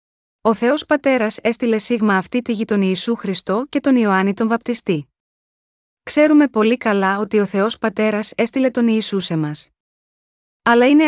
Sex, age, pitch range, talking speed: female, 20-39, 200-245 Hz, 160 wpm